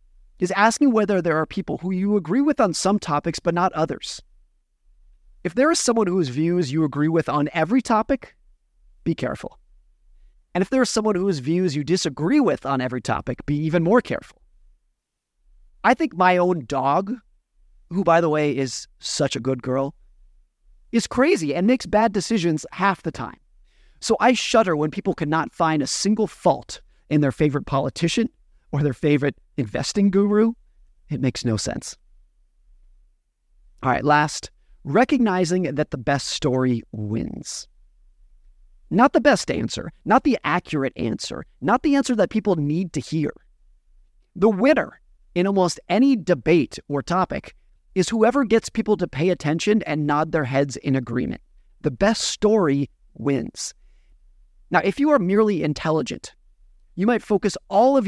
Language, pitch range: English, 140-210 Hz